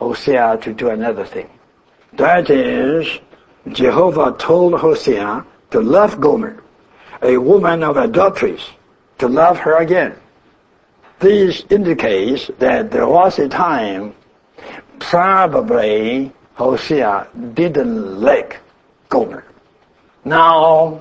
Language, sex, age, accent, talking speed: English, male, 60-79, American, 95 wpm